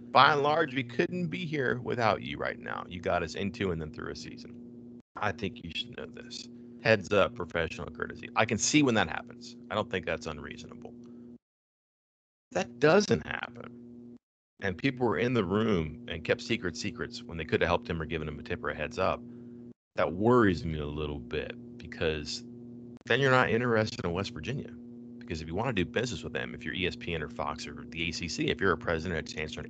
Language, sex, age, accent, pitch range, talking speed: English, male, 30-49, American, 80-120 Hz, 215 wpm